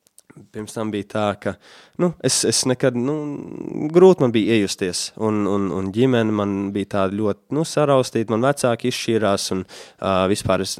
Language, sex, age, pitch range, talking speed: Russian, male, 20-39, 100-130 Hz, 160 wpm